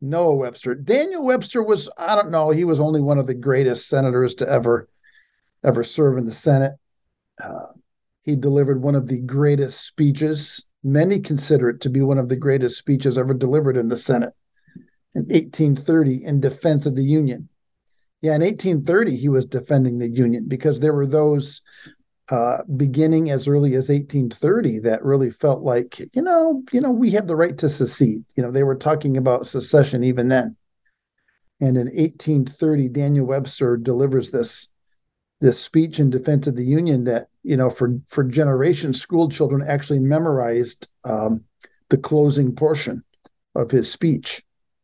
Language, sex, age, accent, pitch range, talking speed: English, male, 50-69, American, 125-150 Hz, 165 wpm